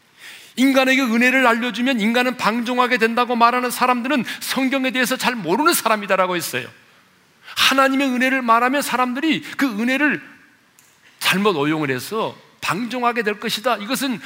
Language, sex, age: Korean, male, 40-59